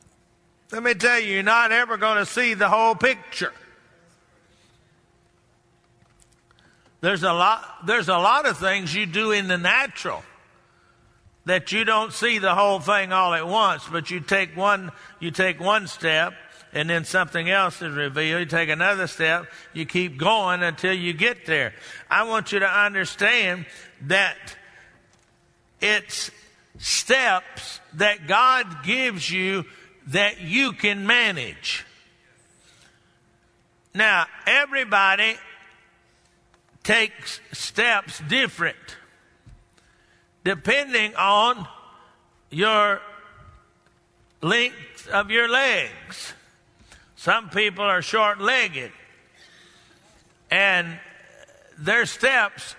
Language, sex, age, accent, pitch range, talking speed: English, male, 60-79, American, 180-220 Hz, 110 wpm